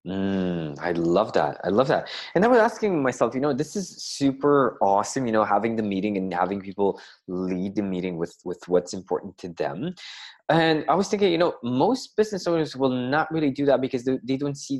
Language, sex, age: English, male, 20-39